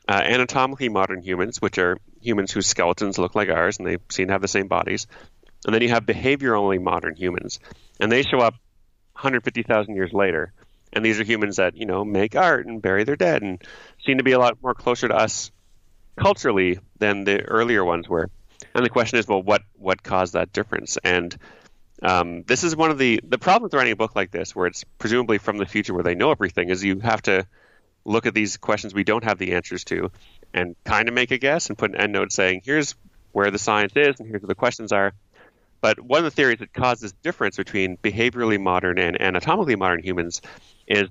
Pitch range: 95-115 Hz